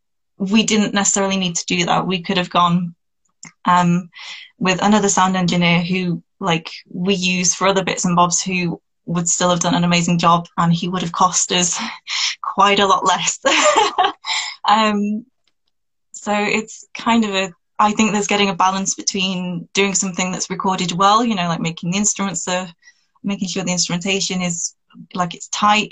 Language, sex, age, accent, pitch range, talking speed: English, female, 20-39, British, 180-210 Hz, 175 wpm